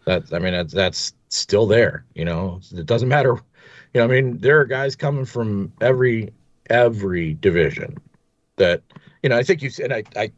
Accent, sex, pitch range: American, male, 85-120 Hz